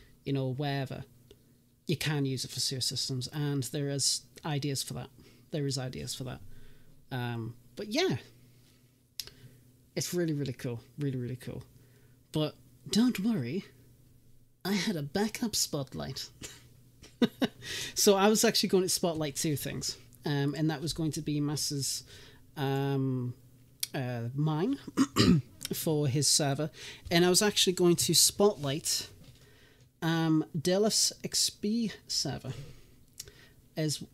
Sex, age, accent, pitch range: male, 30-49, British, 130-160 Hz